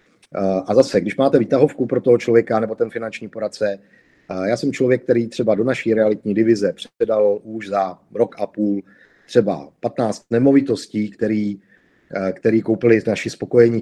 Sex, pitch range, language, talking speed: male, 105-125 Hz, Czech, 150 wpm